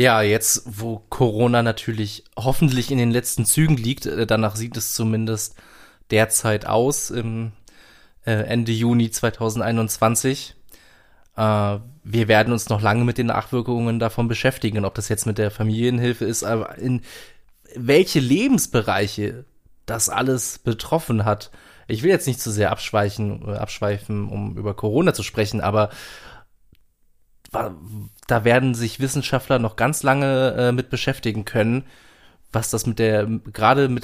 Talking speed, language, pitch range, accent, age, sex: 135 wpm, German, 110-130 Hz, German, 20-39, male